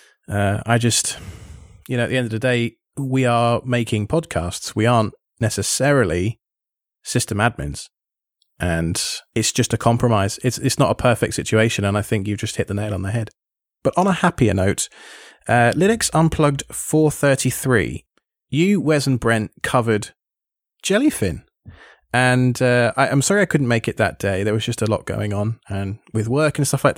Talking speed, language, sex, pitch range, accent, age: 180 wpm, English, male, 110-135 Hz, British, 20-39